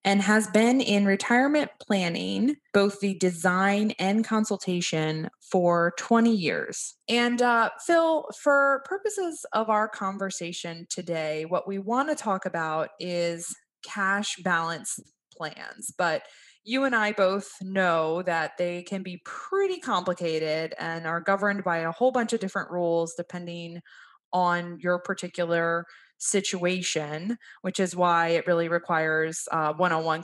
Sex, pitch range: female, 170-210 Hz